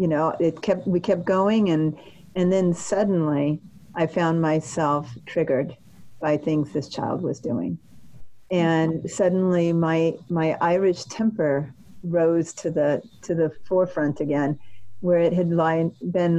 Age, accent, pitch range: 40-59, American, 145-175 Hz